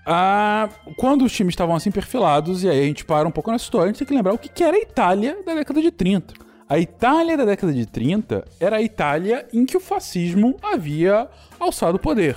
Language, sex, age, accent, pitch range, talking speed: Portuguese, male, 20-39, Brazilian, 140-220 Hz, 230 wpm